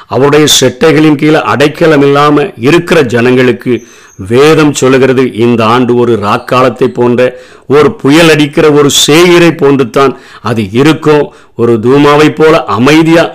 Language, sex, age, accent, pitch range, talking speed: Tamil, male, 50-69, native, 130-155 Hz, 115 wpm